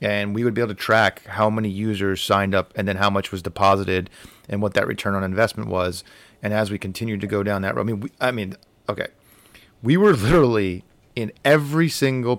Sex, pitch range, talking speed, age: male, 95-115 Hz, 225 wpm, 30-49